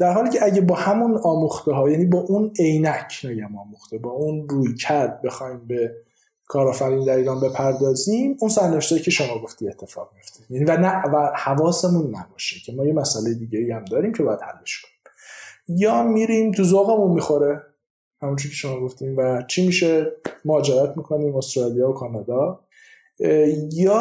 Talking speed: 165 wpm